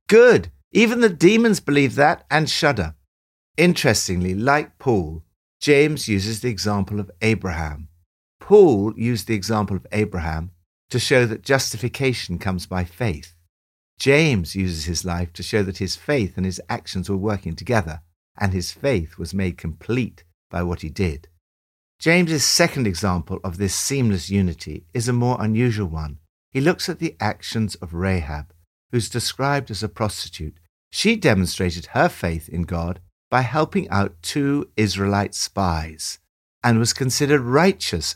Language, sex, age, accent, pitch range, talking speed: English, male, 60-79, British, 85-125 Hz, 150 wpm